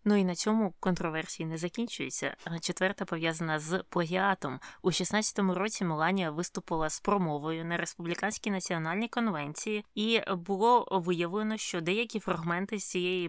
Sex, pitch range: female, 165-195 Hz